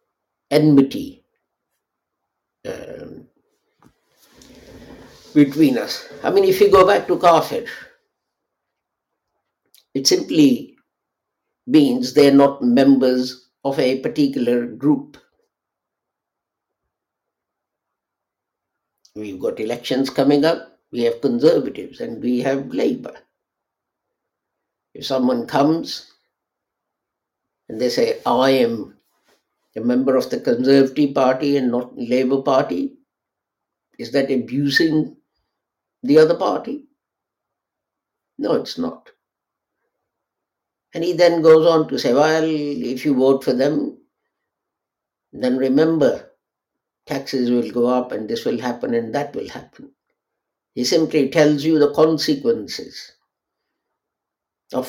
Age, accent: 60-79, Indian